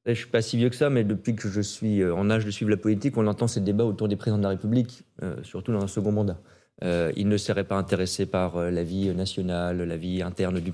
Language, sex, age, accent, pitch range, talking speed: French, male, 40-59, French, 100-125 Hz, 280 wpm